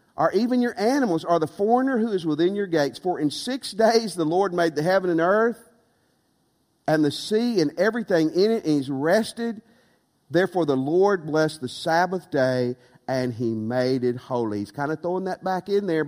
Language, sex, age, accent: English, male, 50-69, American